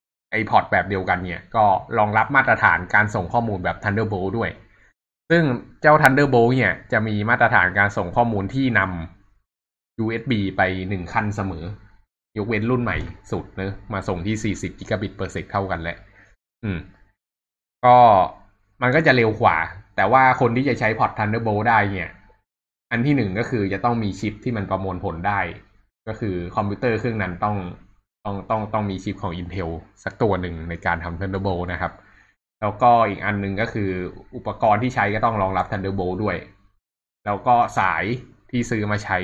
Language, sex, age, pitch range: Thai, male, 20-39, 90-110 Hz